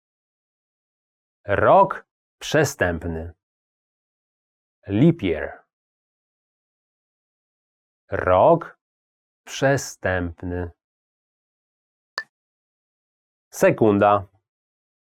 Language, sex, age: English, male, 40-59